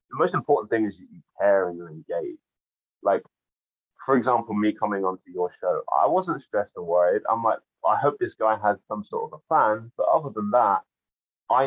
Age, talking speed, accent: 20-39, 210 wpm, British